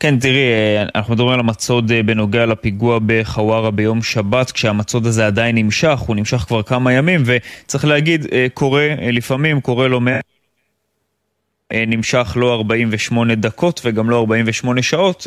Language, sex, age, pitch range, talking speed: Hebrew, male, 20-39, 115-140 Hz, 135 wpm